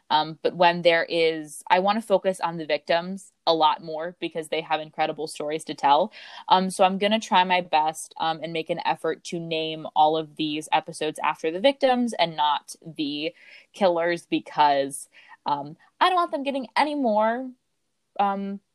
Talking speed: 185 wpm